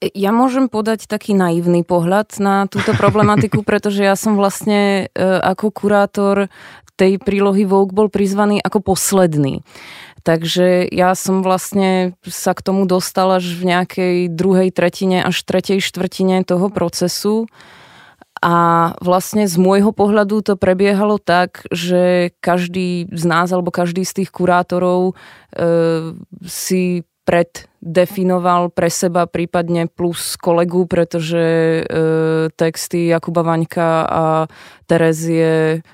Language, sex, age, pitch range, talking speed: Czech, female, 20-39, 165-185 Hz, 125 wpm